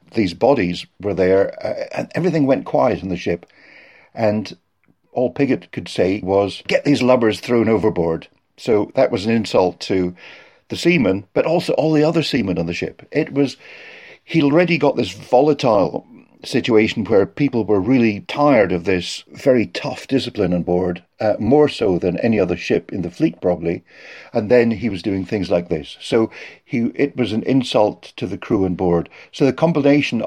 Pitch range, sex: 95-130 Hz, male